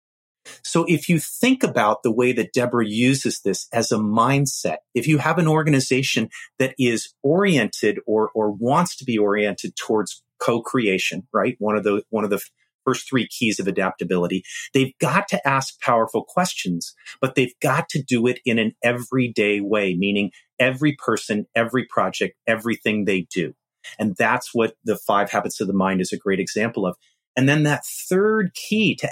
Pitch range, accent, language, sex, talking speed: 110-145 Hz, American, English, male, 175 wpm